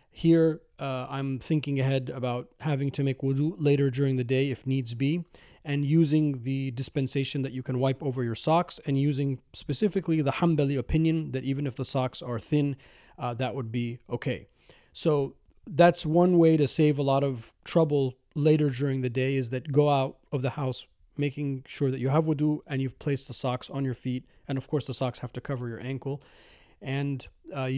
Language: English